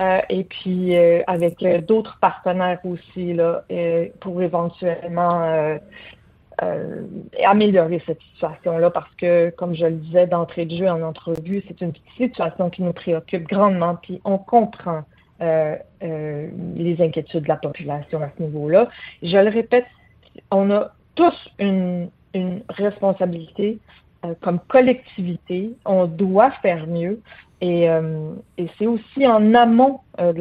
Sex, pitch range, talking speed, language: female, 170-205 Hz, 145 wpm, French